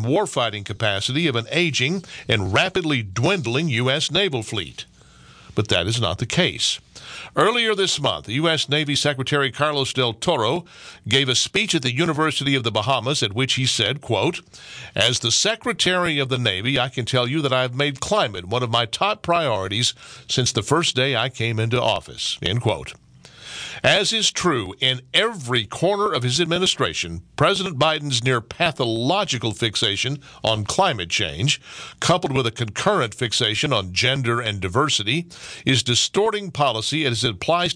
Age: 50-69